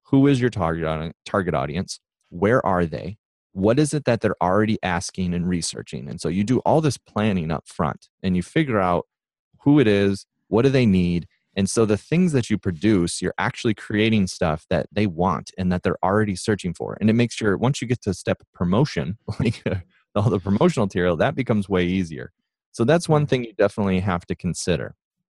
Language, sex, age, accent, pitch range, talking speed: English, male, 30-49, American, 85-110 Hz, 210 wpm